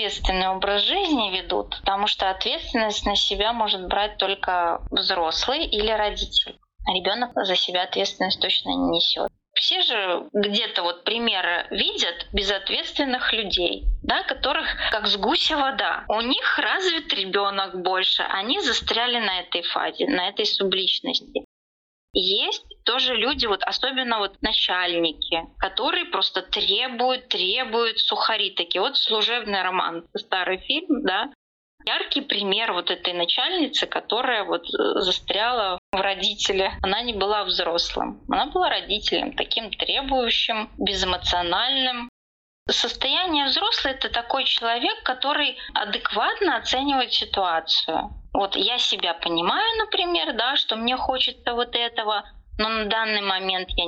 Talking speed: 125 wpm